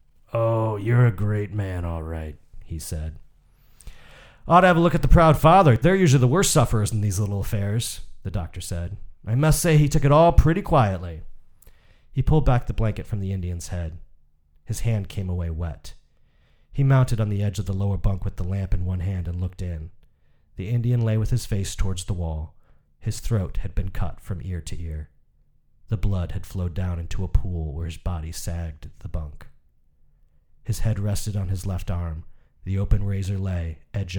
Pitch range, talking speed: 85-110 Hz, 205 wpm